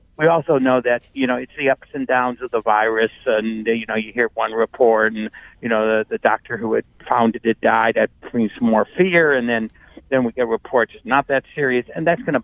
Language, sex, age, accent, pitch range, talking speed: English, male, 60-79, American, 110-150 Hz, 245 wpm